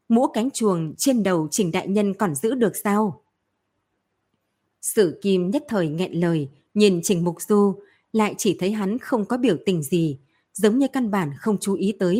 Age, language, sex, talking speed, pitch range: 20-39, Vietnamese, female, 190 wpm, 180-230 Hz